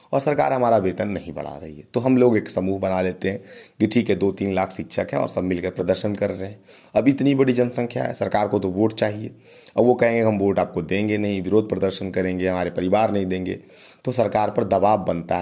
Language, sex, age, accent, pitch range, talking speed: Hindi, male, 30-49, native, 95-110 Hz, 235 wpm